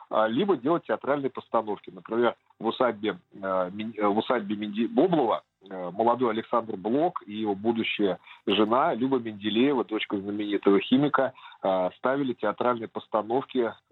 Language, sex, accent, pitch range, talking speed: Russian, male, native, 105-135 Hz, 105 wpm